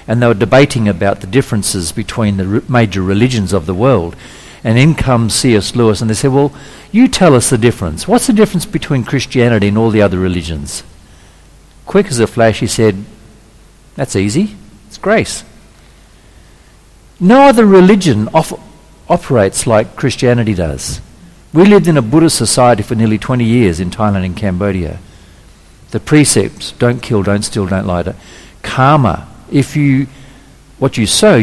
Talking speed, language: 160 wpm, English